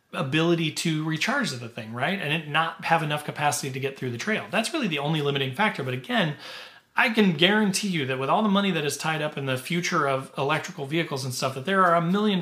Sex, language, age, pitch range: male, English, 40-59, 135-180 Hz